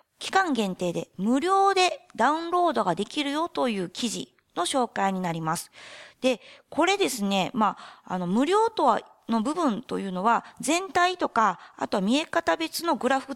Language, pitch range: Japanese, 195-325 Hz